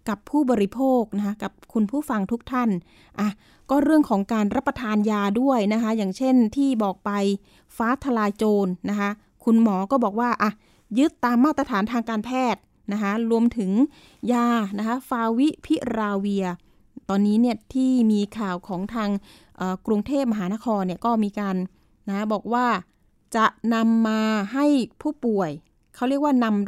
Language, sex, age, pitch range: Thai, female, 20-39, 205-250 Hz